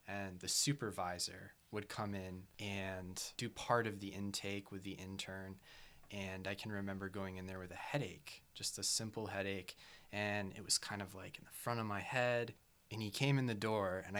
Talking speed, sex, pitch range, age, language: 205 wpm, male, 95-120 Hz, 20-39, English